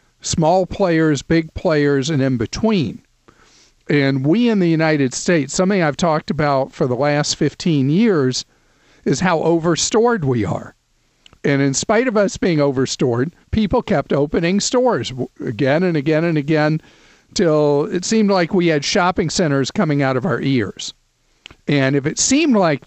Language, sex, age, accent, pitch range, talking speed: English, male, 50-69, American, 135-185 Hz, 160 wpm